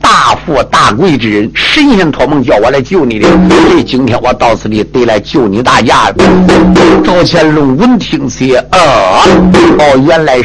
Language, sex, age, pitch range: Chinese, male, 50-69, 130-180 Hz